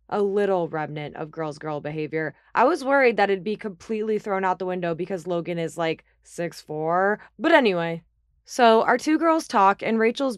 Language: English